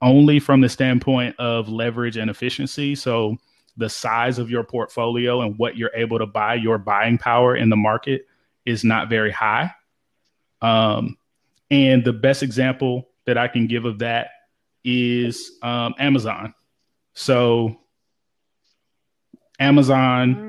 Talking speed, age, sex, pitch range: 135 wpm, 20-39, male, 120-135 Hz